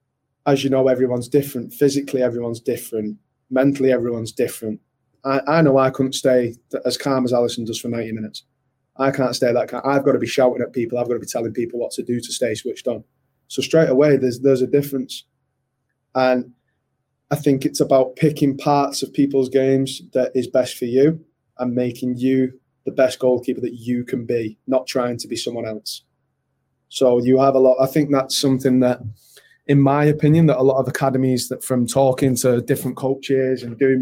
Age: 20-39